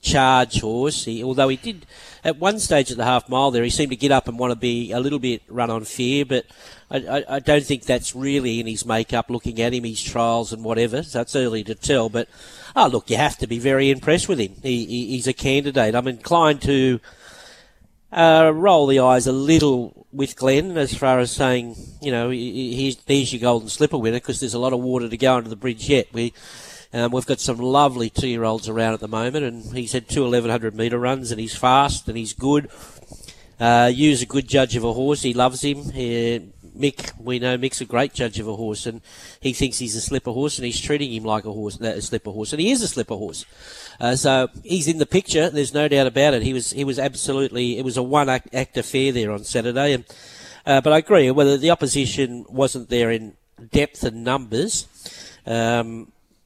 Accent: Australian